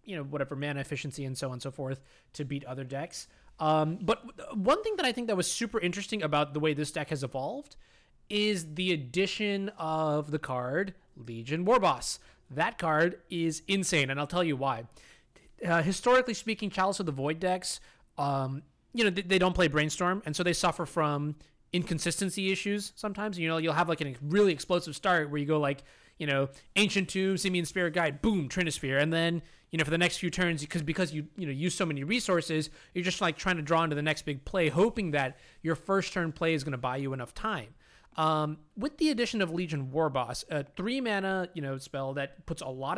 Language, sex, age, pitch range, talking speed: English, male, 20-39, 150-190 Hz, 215 wpm